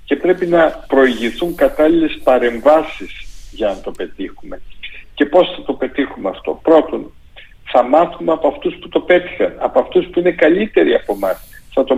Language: Greek